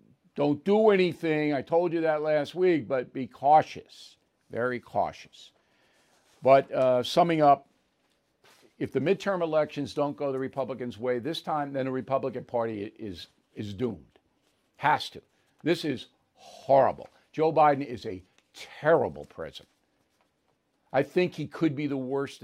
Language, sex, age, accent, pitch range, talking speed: English, male, 60-79, American, 130-165 Hz, 145 wpm